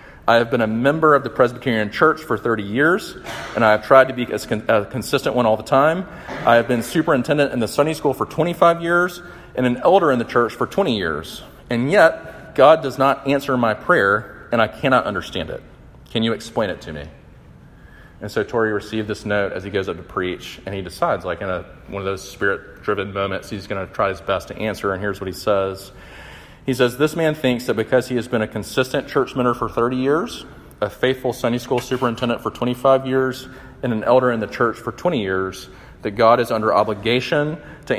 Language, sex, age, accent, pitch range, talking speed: English, male, 40-59, American, 100-135 Hz, 220 wpm